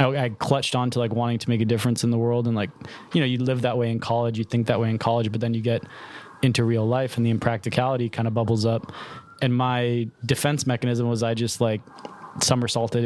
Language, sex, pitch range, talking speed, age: English, male, 115-140 Hz, 240 wpm, 20-39